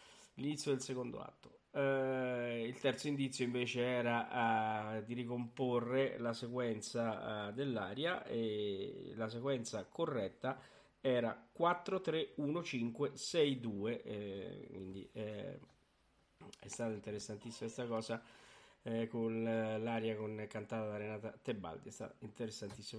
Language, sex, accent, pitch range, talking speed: Italian, male, native, 115-195 Hz, 115 wpm